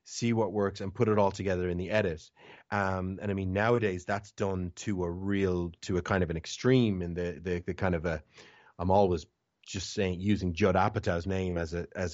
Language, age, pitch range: English, 30-49, 90-110 Hz